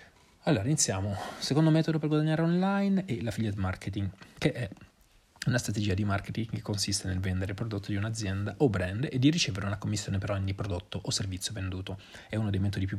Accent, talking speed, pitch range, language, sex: native, 190 wpm, 100-115 Hz, Italian, male